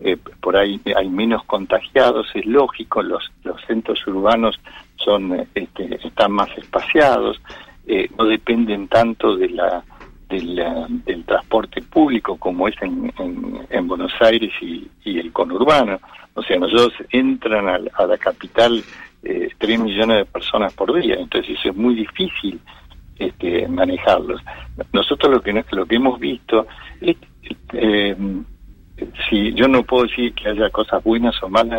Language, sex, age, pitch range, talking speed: Spanish, male, 60-79, 105-130 Hz, 155 wpm